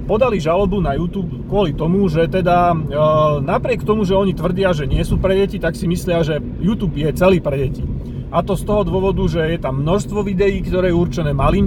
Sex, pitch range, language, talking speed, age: male, 155-190 Hz, Slovak, 215 wpm, 30-49